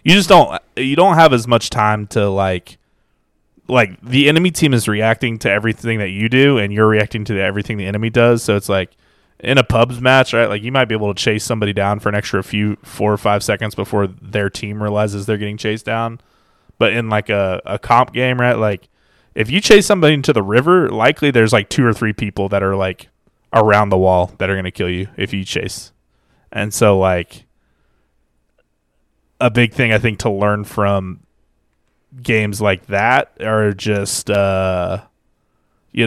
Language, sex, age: English, male, 20-39